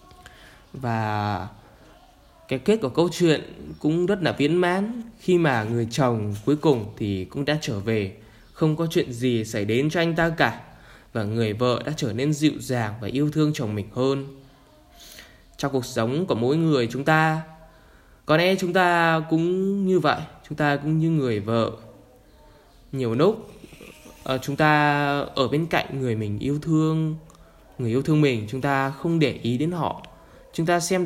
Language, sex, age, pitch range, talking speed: Vietnamese, male, 10-29, 120-160 Hz, 180 wpm